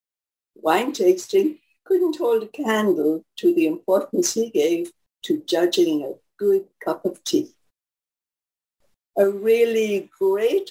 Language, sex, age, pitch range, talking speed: English, female, 60-79, 225-370 Hz, 120 wpm